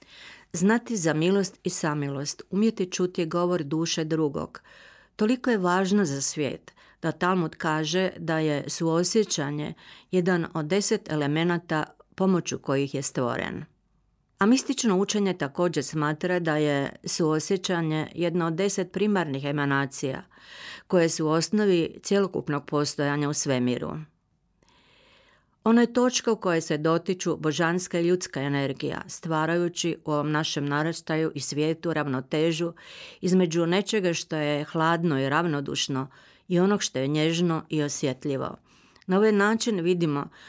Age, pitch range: 40-59, 150-185 Hz